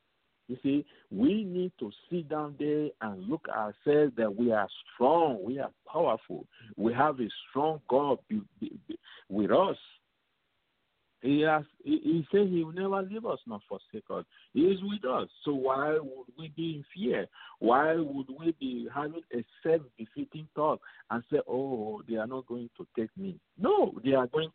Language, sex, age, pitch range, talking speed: English, male, 50-69, 115-165 Hz, 175 wpm